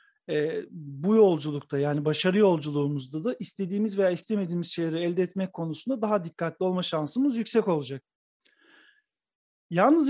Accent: native